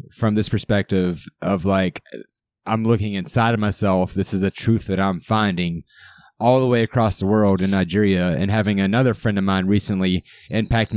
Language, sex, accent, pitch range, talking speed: English, male, American, 100-120 Hz, 180 wpm